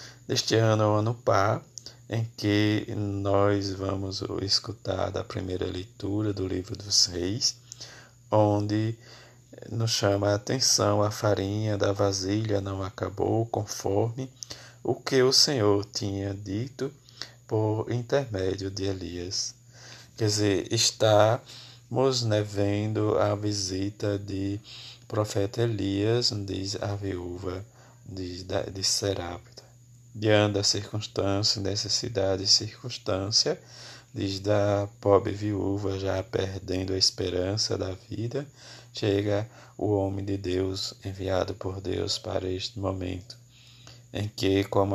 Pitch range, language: 95-115 Hz, Portuguese